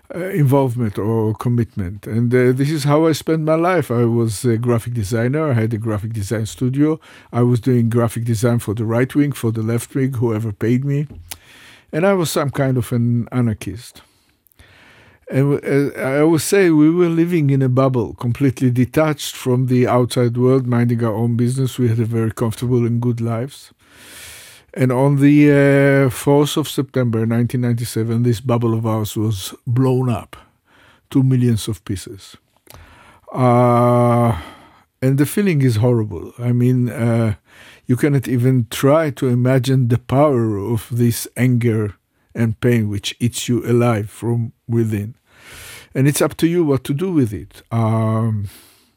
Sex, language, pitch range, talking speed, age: male, English, 115-135 Hz, 165 wpm, 50-69